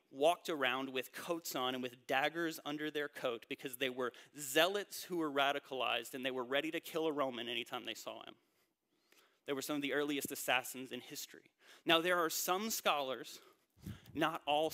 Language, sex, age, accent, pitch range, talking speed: English, male, 30-49, American, 130-165 Hz, 190 wpm